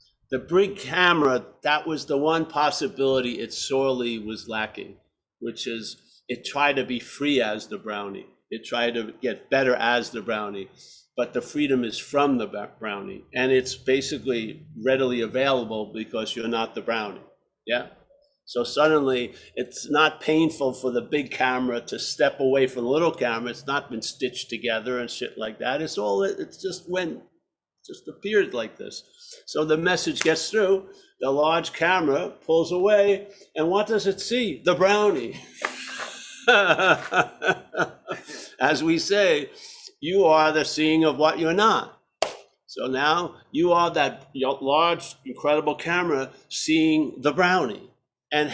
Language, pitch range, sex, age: English, 125-175 Hz, male, 50-69